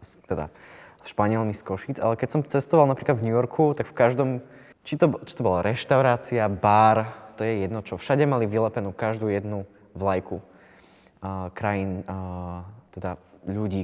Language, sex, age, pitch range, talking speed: Slovak, male, 20-39, 100-125 Hz, 165 wpm